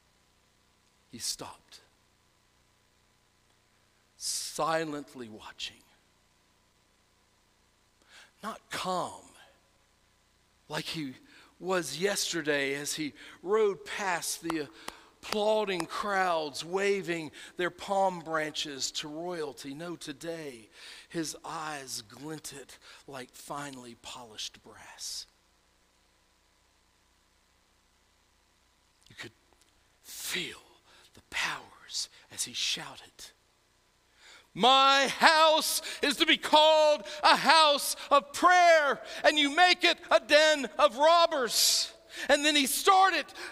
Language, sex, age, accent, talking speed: English, male, 60-79, American, 85 wpm